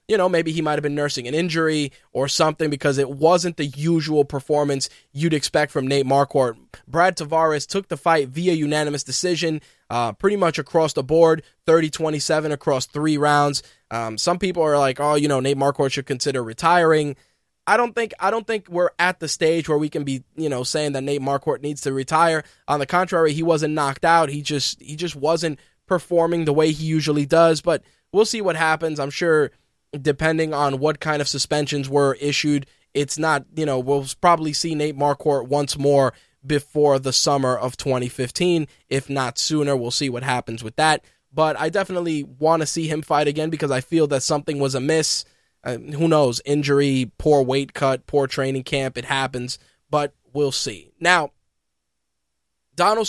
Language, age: English, 20-39